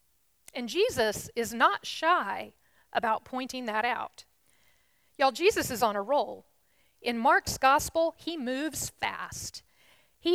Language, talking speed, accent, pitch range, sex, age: English, 130 wpm, American, 225-320 Hz, female, 40-59